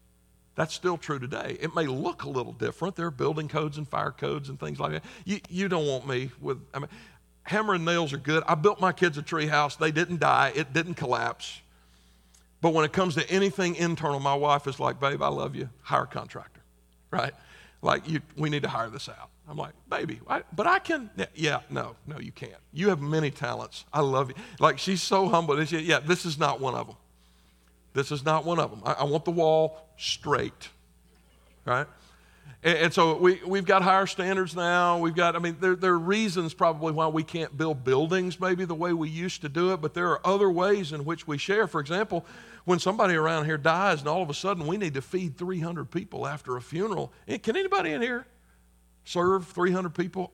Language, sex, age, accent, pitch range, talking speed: English, male, 50-69, American, 140-180 Hz, 225 wpm